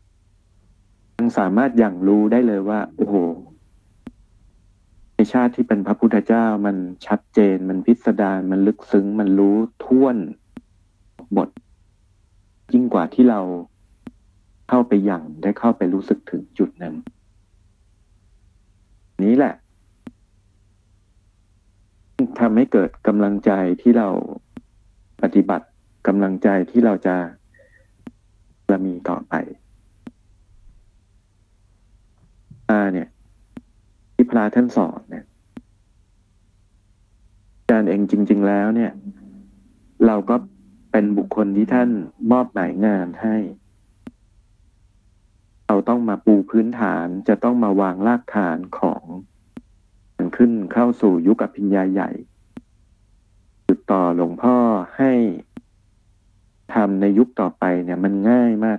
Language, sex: Thai, male